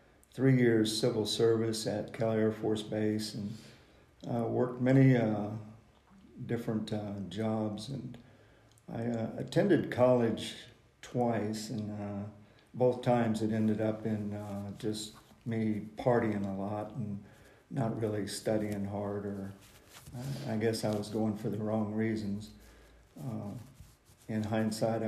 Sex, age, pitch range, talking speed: male, 50-69, 110-120 Hz, 135 wpm